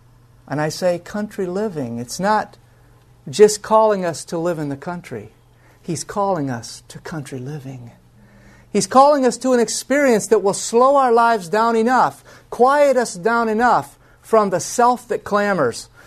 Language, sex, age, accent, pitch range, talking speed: English, male, 50-69, American, 135-215 Hz, 160 wpm